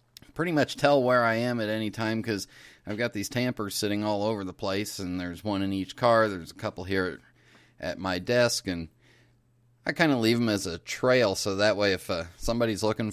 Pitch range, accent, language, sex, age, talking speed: 95-120 Hz, American, English, male, 30-49, 225 wpm